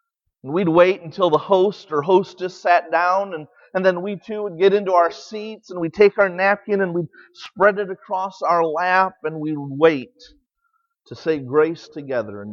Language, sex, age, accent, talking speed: English, male, 40-59, American, 190 wpm